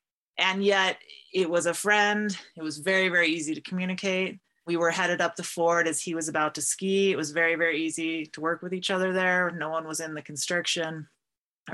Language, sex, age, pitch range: English, female, 30-49, 155-180 Hz